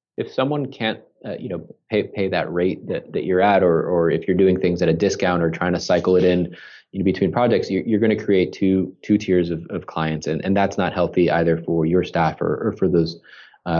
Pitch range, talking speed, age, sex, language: 85-105 Hz, 255 wpm, 30-49, male, English